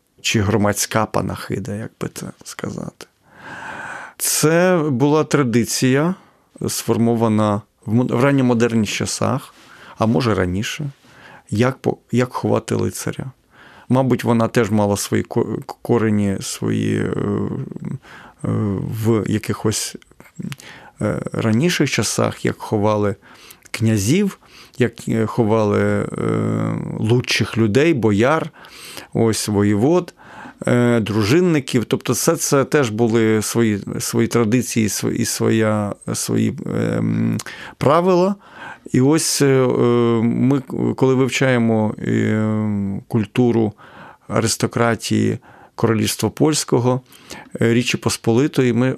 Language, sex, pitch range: Ukrainian, male, 110-130 Hz